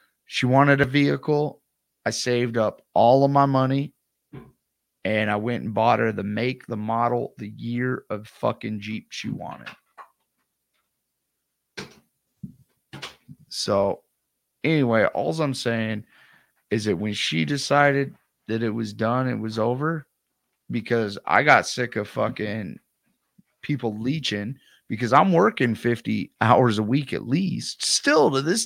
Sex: male